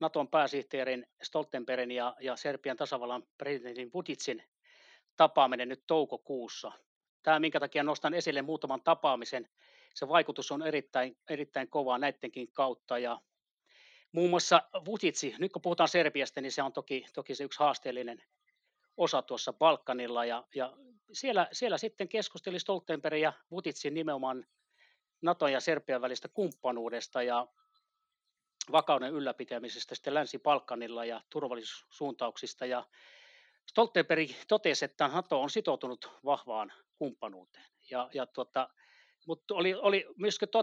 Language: Finnish